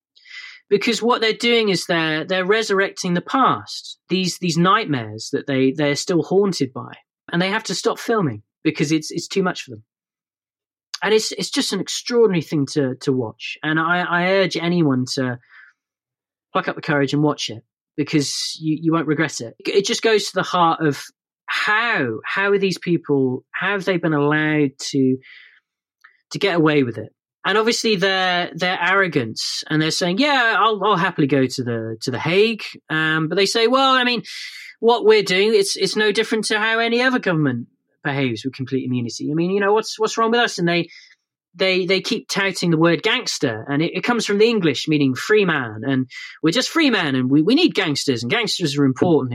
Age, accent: 30-49, British